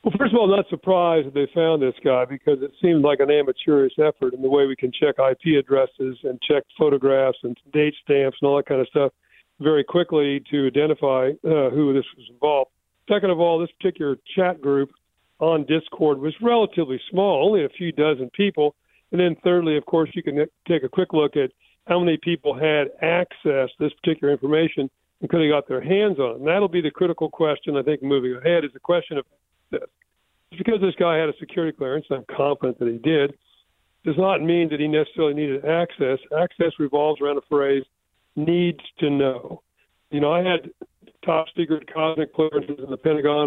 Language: English